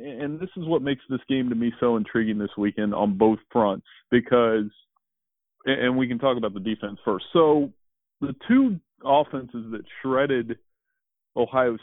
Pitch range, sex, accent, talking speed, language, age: 110-135 Hz, male, American, 160 wpm, English, 30-49